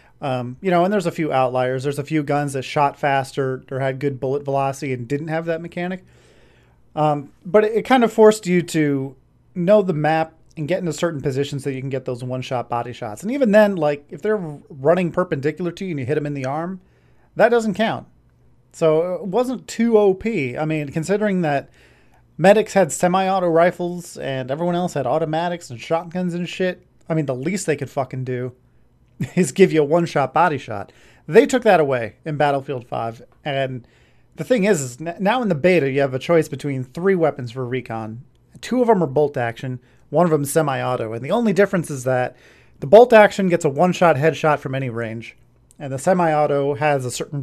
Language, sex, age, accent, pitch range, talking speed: English, male, 30-49, American, 135-180 Hz, 210 wpm